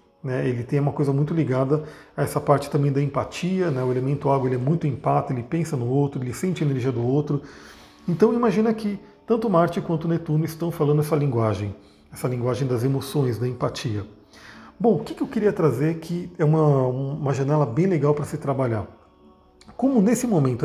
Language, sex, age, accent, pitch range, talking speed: Portuguese, male, 40-59, Brazilian, 130-170 Hz, 195 wpm